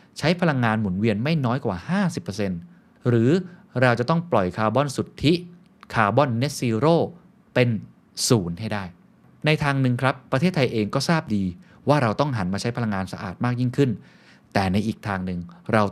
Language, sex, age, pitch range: Thai, male, 20-39, 100-140 Hz